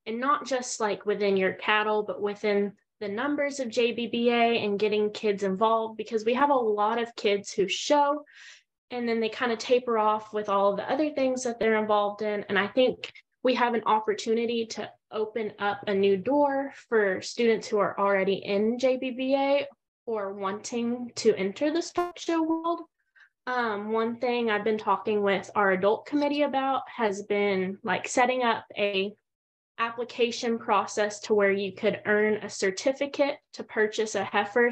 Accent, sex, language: American, female, English